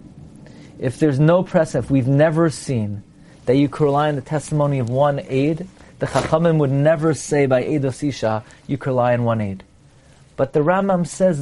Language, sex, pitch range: English, male, 145-190 Hz